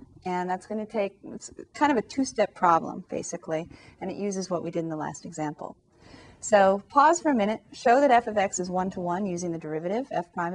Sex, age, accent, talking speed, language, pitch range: female, 30-49, American, 230 wpm, English, 185-240 Hz